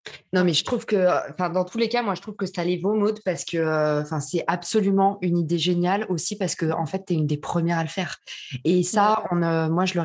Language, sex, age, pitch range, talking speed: French, female, 20-39, 175-215 Hz, 280 wpm